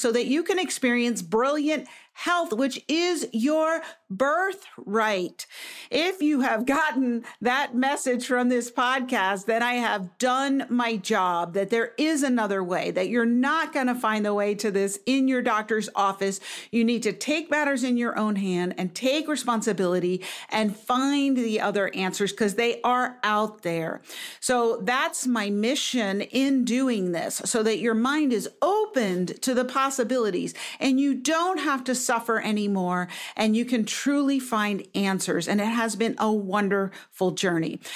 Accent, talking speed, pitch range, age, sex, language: American, 165 wpm, 205-270 Hz, 50-69, female, English